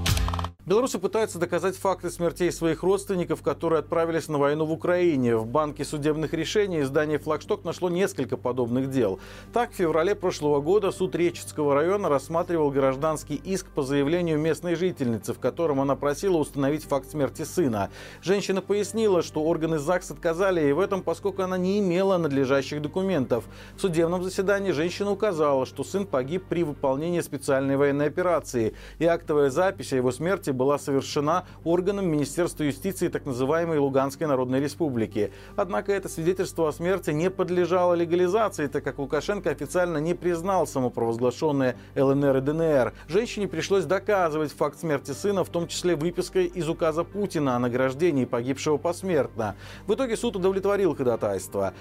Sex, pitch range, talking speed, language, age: male, 140-180 Hz, 150 wpm, Russian, 40-59